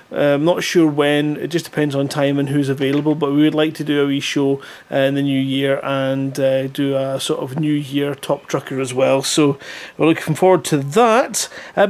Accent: British